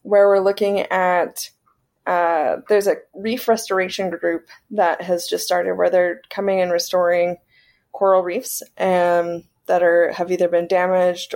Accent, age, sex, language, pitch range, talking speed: American, 20-39, female, English, 180-210 Hz, 155 wpm